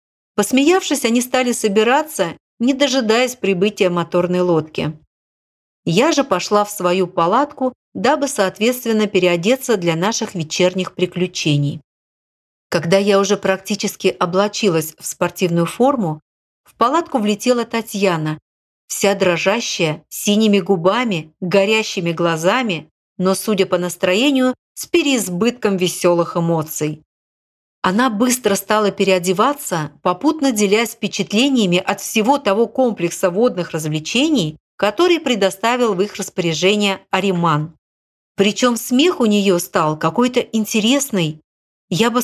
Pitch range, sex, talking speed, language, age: 180-240 Hz, female, 110 wpm, Russian, 50-69